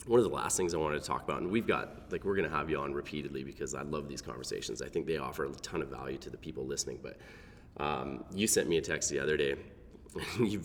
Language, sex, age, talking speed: English, male, 30-49, 275 wpm